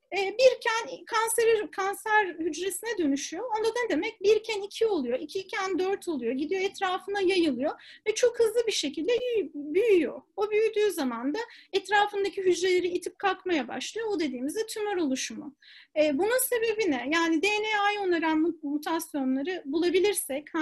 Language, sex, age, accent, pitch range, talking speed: Turkish, female, 40-59, native, 290-400 Hz, 135 wpm